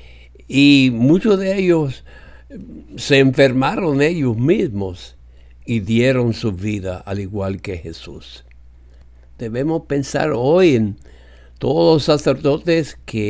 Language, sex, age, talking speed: English, male, 60-79, 110 wpm